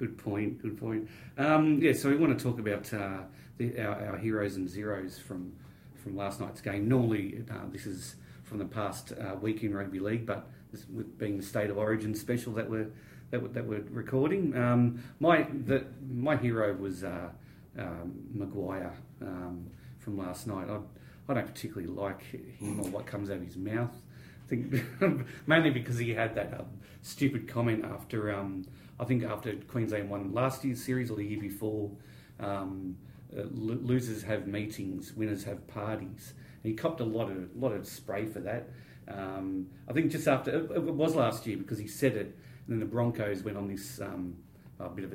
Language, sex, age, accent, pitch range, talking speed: English, male, 40-59, Australian, 100-125 Hz, 195 wpm